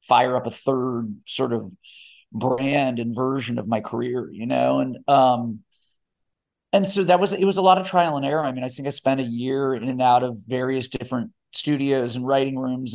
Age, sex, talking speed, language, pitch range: 50-69, male, 215 wpm, English, 120-140 Hz